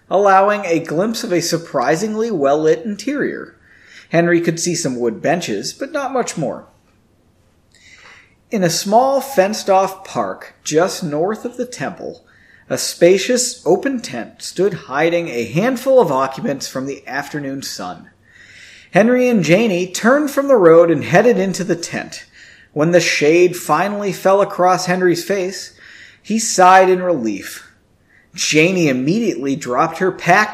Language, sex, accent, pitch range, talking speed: English, male, American, 150-220 Hz, 140 wpm